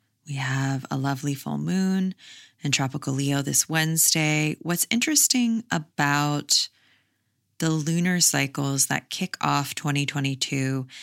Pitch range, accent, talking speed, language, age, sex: 140-165 Hz, American, 115 wpm, English, 20-39, female